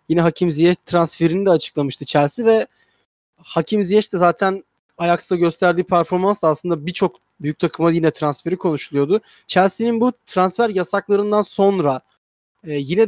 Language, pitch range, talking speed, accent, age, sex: Turkish, 160-210 Hz, 130 wpm, native, 30-49, male